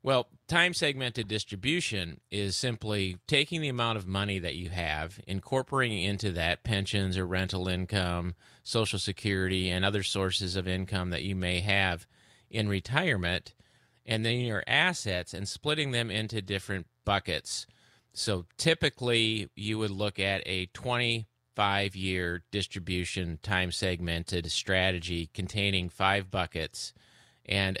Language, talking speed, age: English, 130 wpm, 30-49